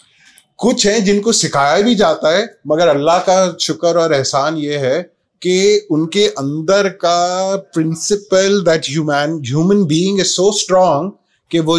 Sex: male